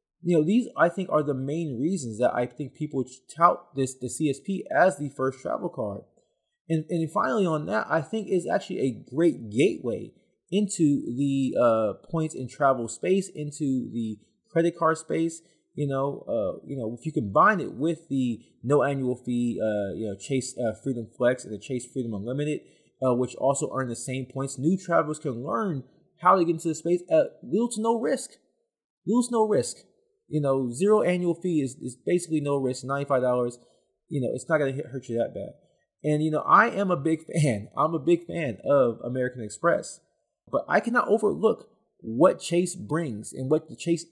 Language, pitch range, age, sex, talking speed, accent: English, 130-170 Hz, 20-39, male, 200 wpm, American